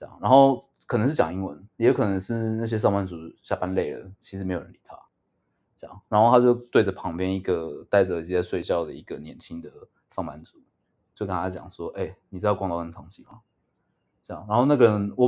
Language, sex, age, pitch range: Chinese, male, 20-39, 95-120 Hz